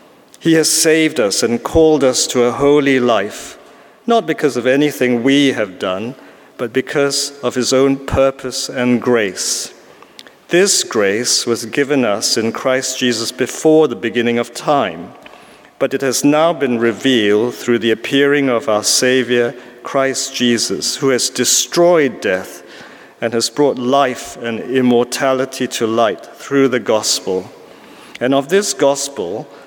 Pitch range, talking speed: 120-145 Hz, 145 wpm